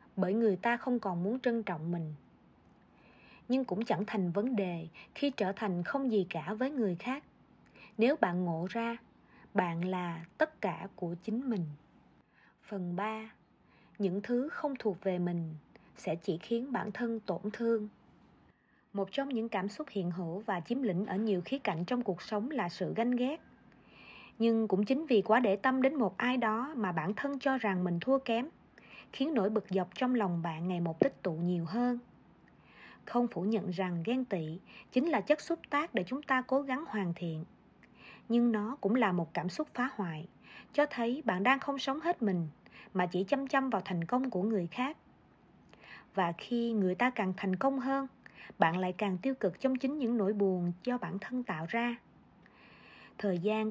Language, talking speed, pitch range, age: Vietnamese, 195 wpm, 185-250 Hz, 20-39